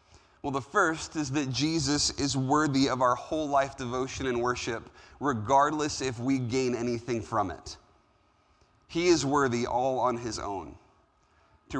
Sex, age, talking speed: male, 30-49, 155 wpm